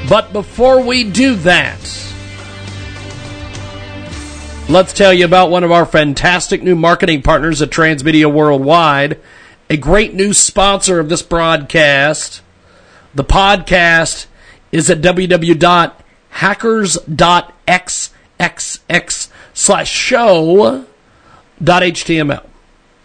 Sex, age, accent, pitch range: male, 50-69, American, 155-195 Hz